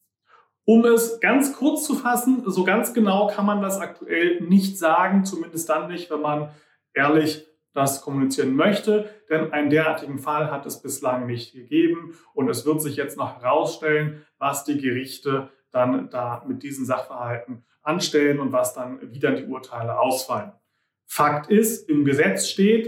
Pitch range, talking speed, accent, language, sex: 150-210 Hz, 165 wpm, German, German, male